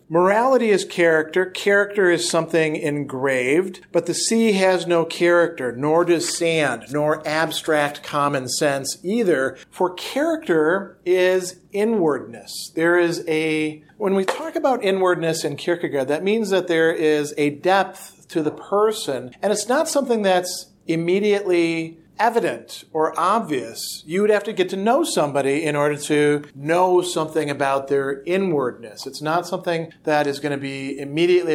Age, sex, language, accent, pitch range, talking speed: 50-69, male, English, American, 145-185 Hz, 150 wpm